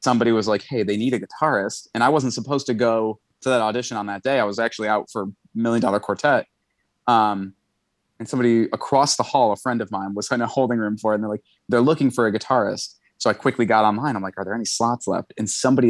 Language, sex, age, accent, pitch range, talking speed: English, male, 30-49, American, 105-120 Hz, 255 wpm